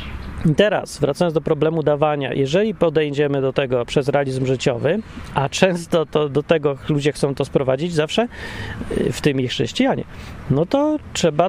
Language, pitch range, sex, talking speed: Polish, 140-175 Hz, male, 150 wpm